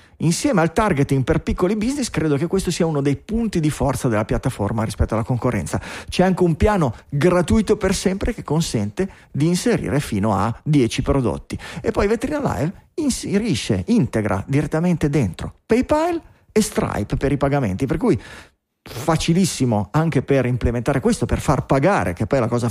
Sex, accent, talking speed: male, native, 170 wpm